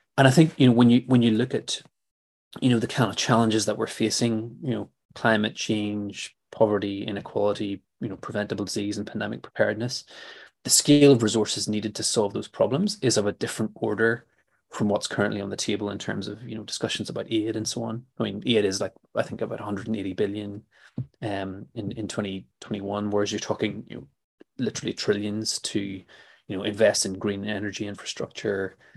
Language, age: English, 20-39